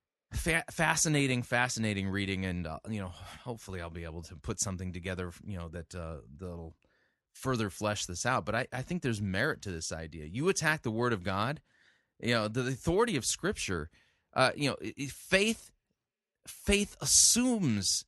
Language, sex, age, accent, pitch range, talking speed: English, male, 30-49, American, 95-140 Hz, 170 wpm